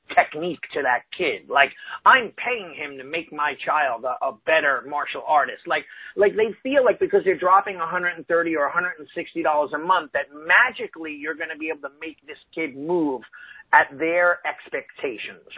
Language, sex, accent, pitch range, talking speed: English, male, American, 155-200 Hz, 210 wpm